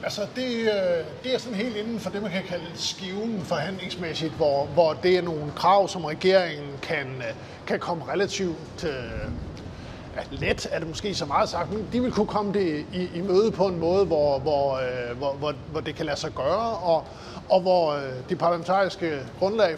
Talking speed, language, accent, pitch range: 165 wpm, Danish, native, 155-195 Hz